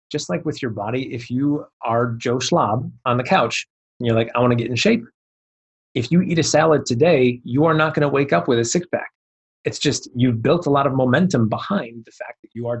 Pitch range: 115-150 Hz